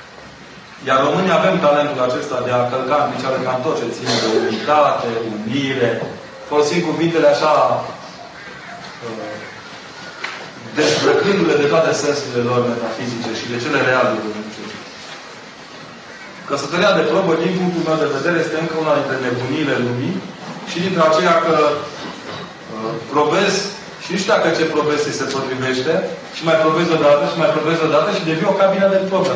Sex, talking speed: male, 145 wpm